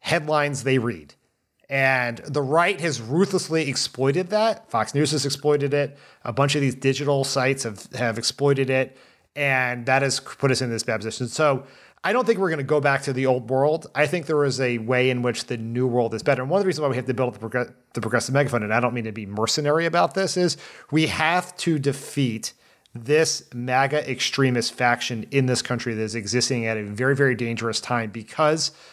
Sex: male